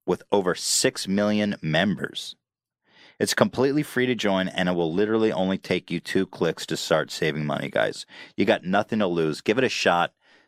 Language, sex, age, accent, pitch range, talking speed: English, male, 30-49, American, 90-120 Hz, 190 wpm